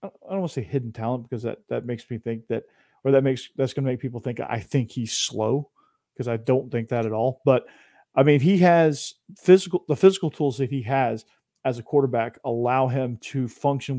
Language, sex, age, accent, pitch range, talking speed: English, male, 40-59, American, 120-145 Hz, 225 wpm